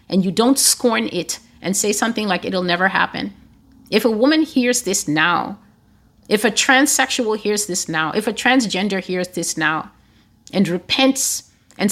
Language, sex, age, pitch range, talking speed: English, female, 30-49, 185-240 Hz, 165 wpm